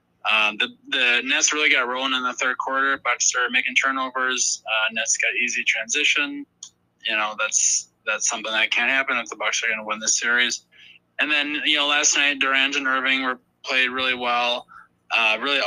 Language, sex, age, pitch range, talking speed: English, male, 20-39, 120-140 Hz, 200 wpm